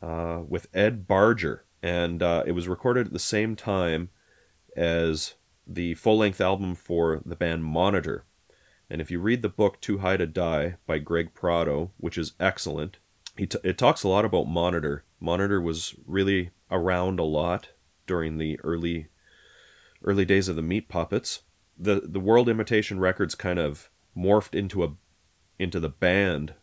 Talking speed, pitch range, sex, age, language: 165 wpm, 80-95 Hz, male, 30-49, English